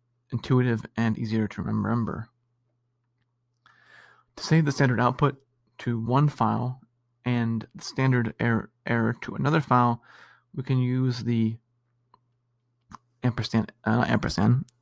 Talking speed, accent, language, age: 115 wpm, American, English, 20-39